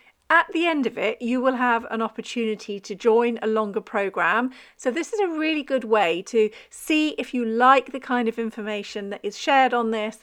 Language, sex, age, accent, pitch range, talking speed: English, female, 40-59, British, 210-265 Hz, 210 wpm